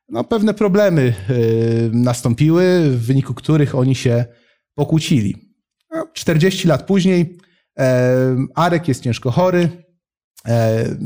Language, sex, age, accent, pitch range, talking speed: Polish, male, 30-49, native, 130-180 Hz, 115 wpm